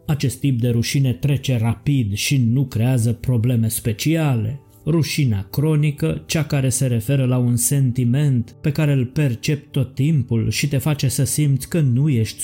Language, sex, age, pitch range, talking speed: Romanian, male, 20-39, 120-145 Hz, 165 wpm